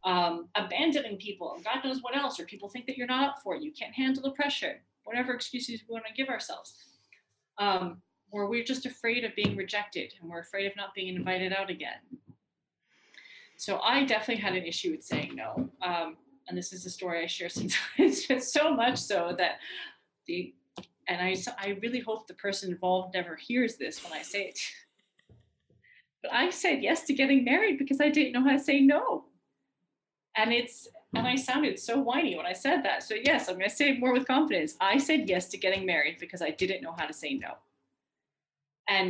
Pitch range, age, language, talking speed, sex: 185-260 Hz, 30-49, English, 210 wpm, female